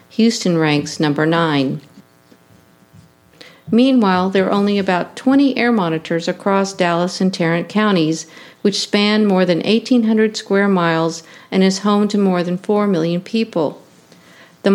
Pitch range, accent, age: 165-210 Hz, American, 50-69